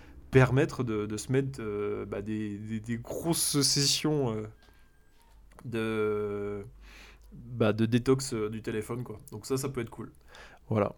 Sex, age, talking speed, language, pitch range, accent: male, 20-39, 155 wpm, French, 110-140 Hz, French